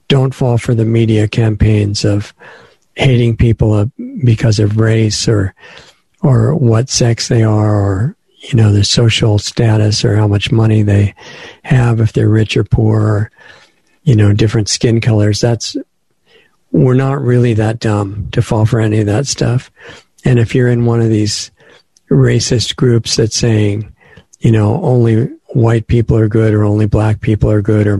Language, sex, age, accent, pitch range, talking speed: English, male, 50-69, American, 105-120 Hz, 170 wpm